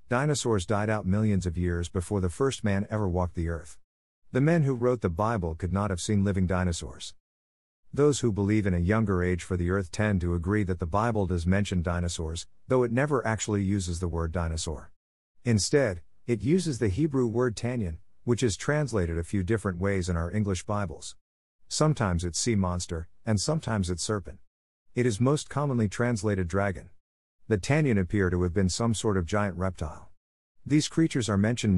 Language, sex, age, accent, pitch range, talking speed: English, male, 50-69, American, 90-110 Hz, 190 wpm